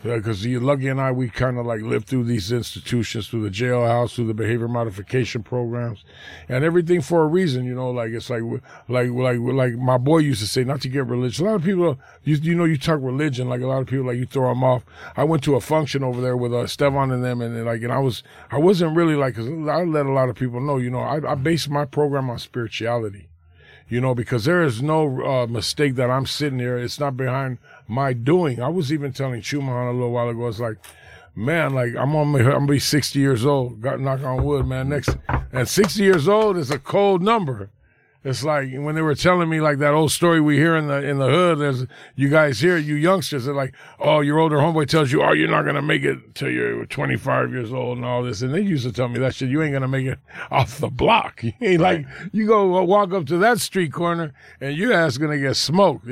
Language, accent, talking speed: English, American, 250 wpm